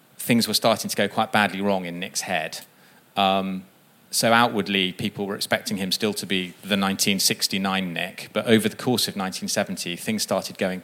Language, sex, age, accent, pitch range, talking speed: English, male, 30-49, British, 95-120 Hz, 185 wpm